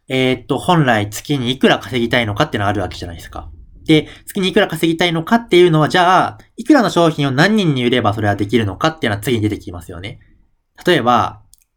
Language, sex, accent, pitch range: Japanese, male, native, 105-160 Hz